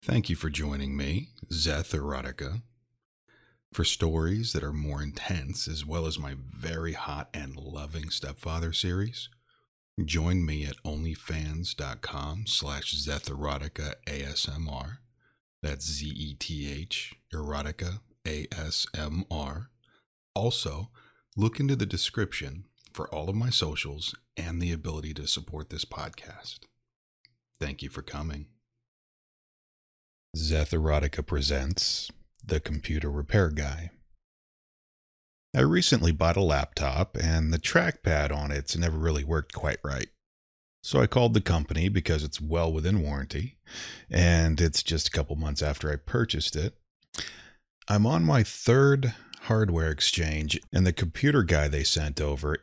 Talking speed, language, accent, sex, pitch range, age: 125 wpm, English, American, male, 75-95 Hz, 40-59